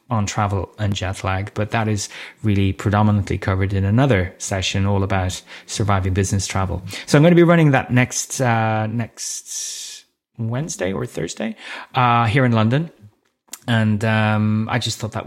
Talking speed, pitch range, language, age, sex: 165 wpm, 105-120 Hz, English, 30-49, male